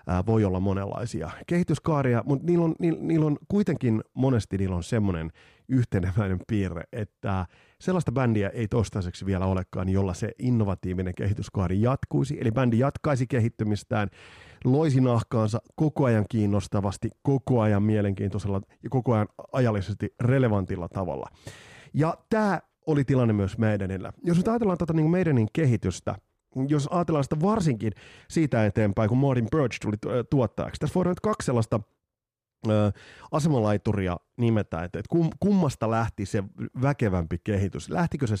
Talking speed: 135 wpm